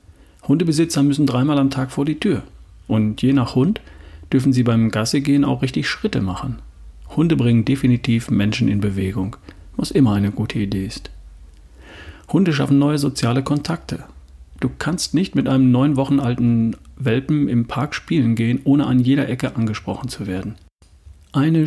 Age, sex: 40-59, male